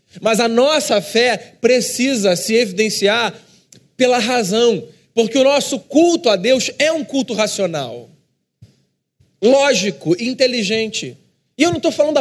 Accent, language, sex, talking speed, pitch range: Brazilian, Portuguese, male, 130 wpm, 200-260 Hz